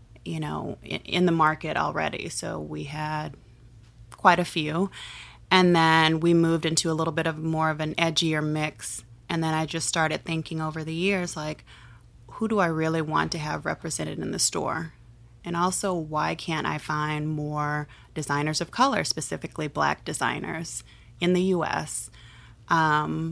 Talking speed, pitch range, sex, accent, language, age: 165 wpm, 145-165 Hz, female, American, English, 30-49